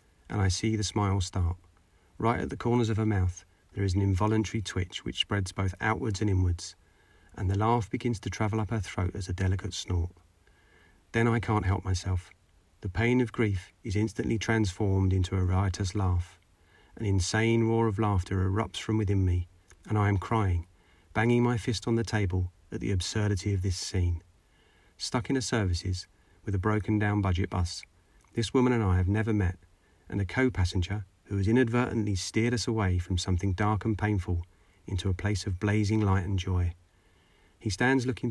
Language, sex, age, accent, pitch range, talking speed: English, male, 40-59, British, 90-110 Hz, 190 wpm